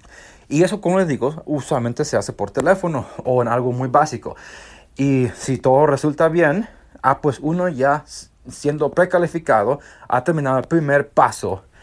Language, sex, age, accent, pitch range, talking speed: Spanish, male, 30-49, Mexican, 125-165 Hz, 155 wpm